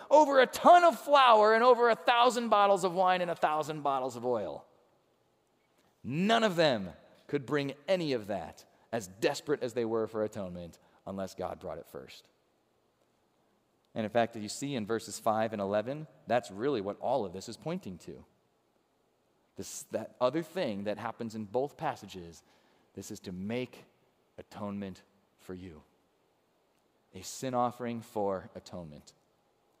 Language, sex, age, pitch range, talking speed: English, male, 30-49, 105-165 Hz, 160 wpm